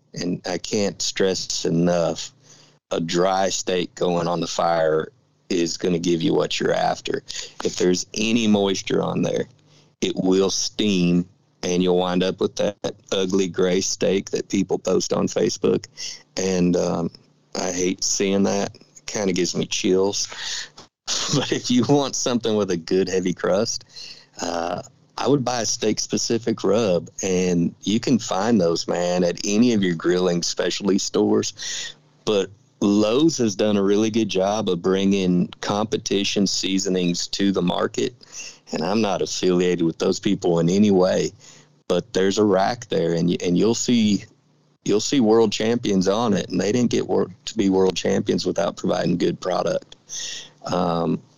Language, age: English, 50-69